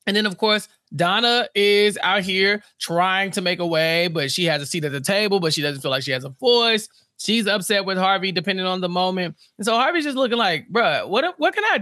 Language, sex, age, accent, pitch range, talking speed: English, male, 20-39, American, 150-200 Hz, 250 wpm